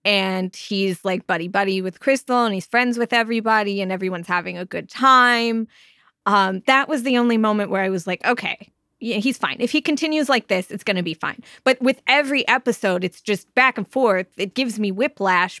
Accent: American